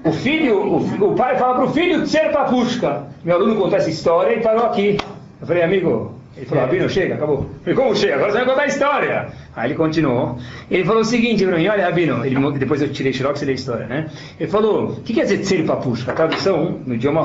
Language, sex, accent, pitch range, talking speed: Portuguese, male, Brazilian, 145-245 Hz, 255 wpm